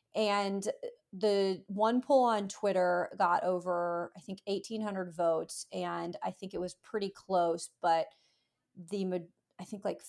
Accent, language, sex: American, English, female